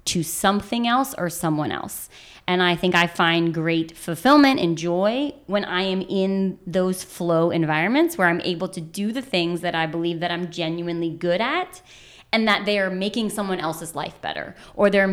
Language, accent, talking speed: German, American, 190 wpm